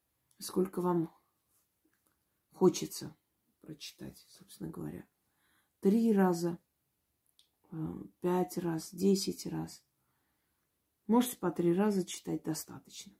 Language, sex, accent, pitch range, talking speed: Russian, female, native, 160-195 Hz, 80 wpm